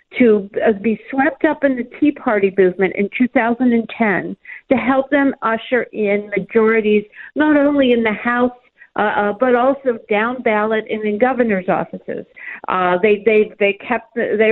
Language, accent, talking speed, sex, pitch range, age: English, American, 155 wpm, female, 215-265 Hz, 50-69